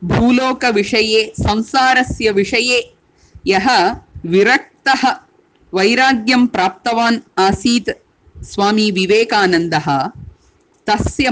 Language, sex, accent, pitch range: English, female, Indian, 215-270 Hz